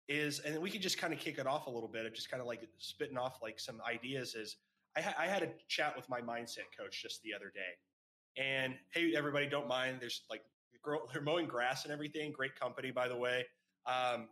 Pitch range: 120-150 Hz